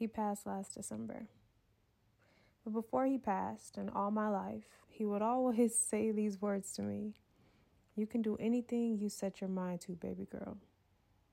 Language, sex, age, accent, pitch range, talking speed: English, female, 20-39, American, 185-220 Hz, 165 wpm